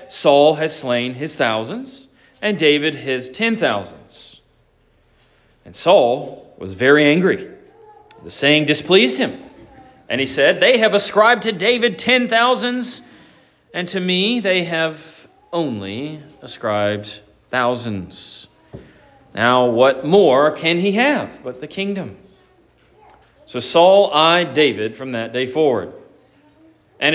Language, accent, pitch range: English, American, 130-205 Hz